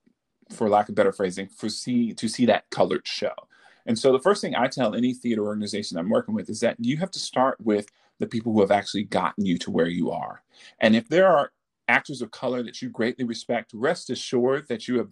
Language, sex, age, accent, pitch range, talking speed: English, male, 40-59, American, 120-170 Hz, 235 wpm